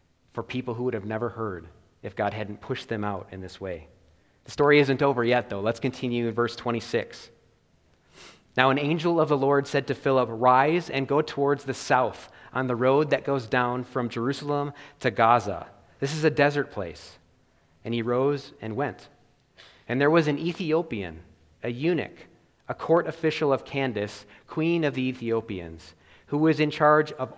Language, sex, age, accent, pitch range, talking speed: English, male, 30-49, American, 115-140 Hz, 180 wpm